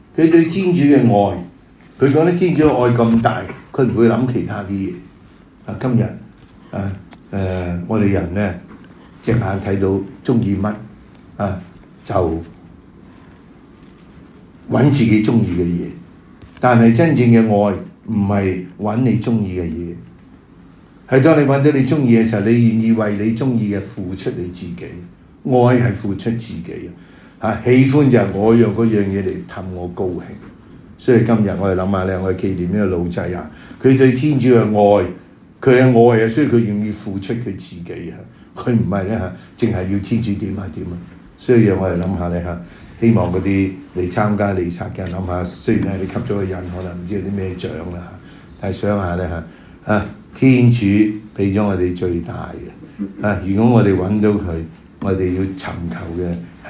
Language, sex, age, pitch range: English, male, 60-79, 90-115 Hz